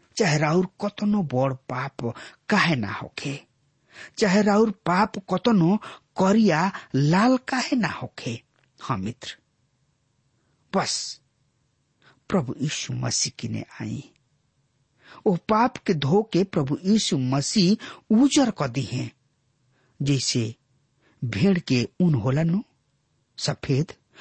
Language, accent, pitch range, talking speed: English, Indian, 130-190 Hz, 100 wpm